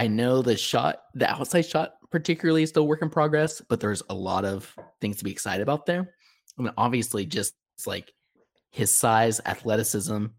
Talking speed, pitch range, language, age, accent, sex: 190 wpm, 100-125 Hz, English, 20-39, American, male